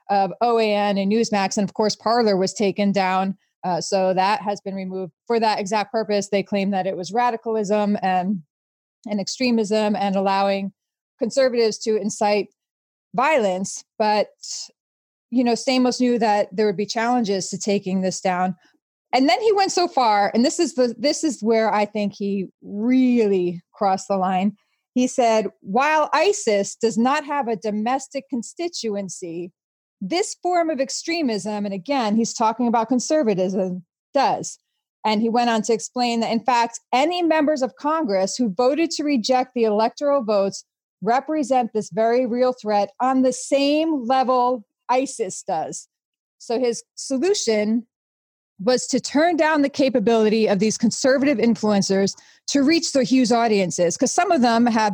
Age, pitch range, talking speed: 30-49, 200-260 Hz, 160 wpm